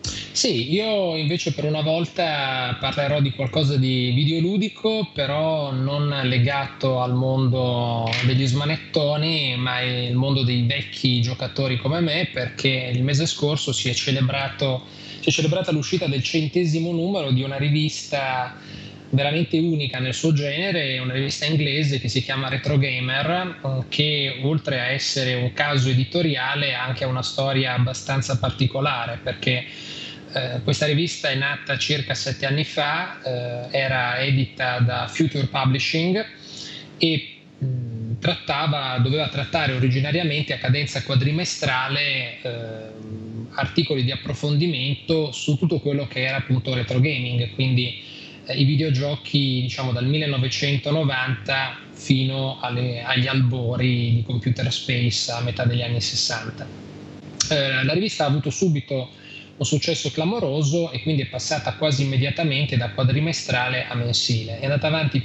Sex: male